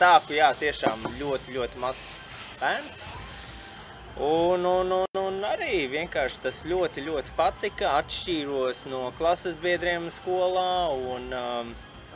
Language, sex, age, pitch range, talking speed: English, male, 20-39, 125-180 Hz, 115 wpm